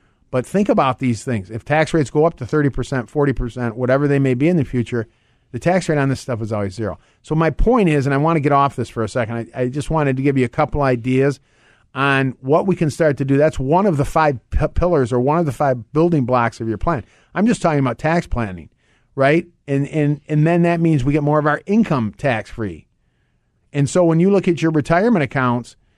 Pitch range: 125-155 Hz